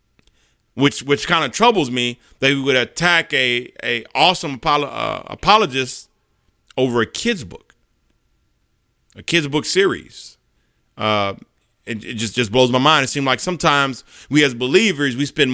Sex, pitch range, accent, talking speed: male, 130-160 Hz, American, 160 wpm